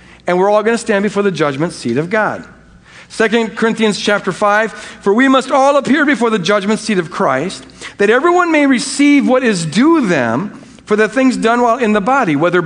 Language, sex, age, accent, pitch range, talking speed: English, male, 50-69, American, 180-245 Hz, 210 wpm